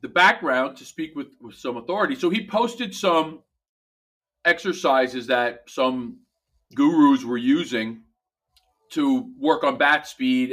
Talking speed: 130 wpm